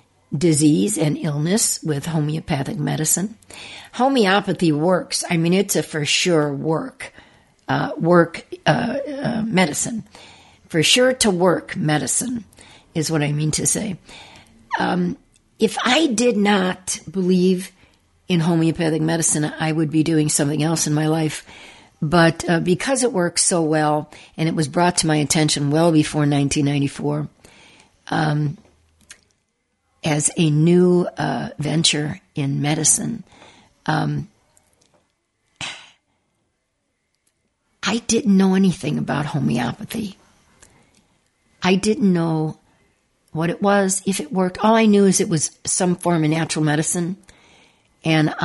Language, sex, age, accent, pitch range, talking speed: English, female, 60-79, American, 155-185 Hz, 125 wpm